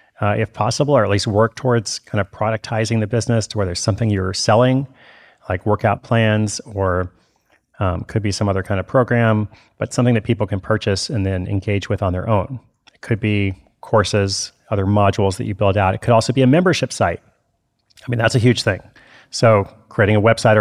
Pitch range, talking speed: 100-120 Hz, 205 wpm